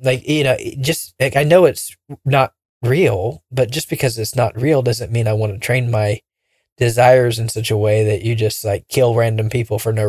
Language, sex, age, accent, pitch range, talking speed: English, male, 20-39, American, 110-135 Hz, 220 wpm